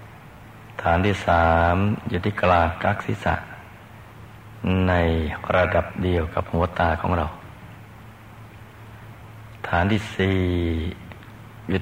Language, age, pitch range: Thai, 60-79, 90-110 Hz